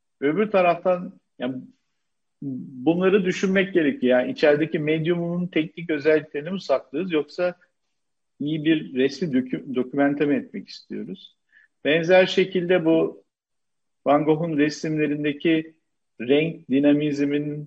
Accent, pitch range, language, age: native, 130-175 Hz, Turkish, 50-69